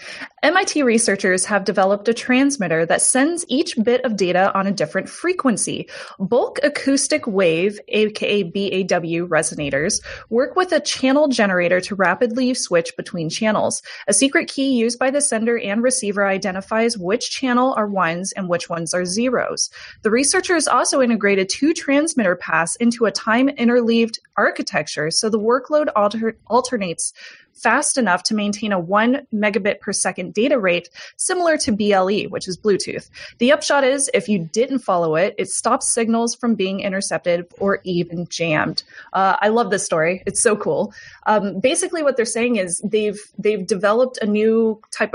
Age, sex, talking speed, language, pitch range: 20-39, female, 160 wpm, English, 190-250 Hz